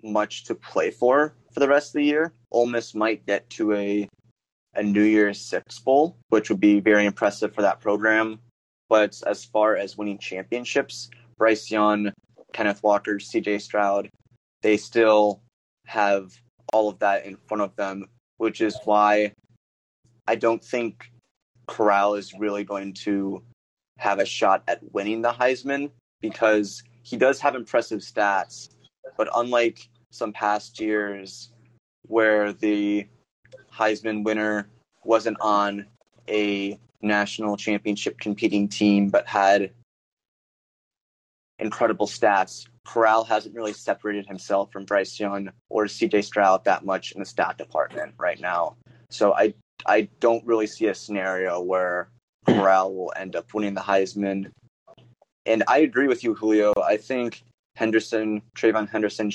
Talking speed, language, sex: 140 wpm, English, male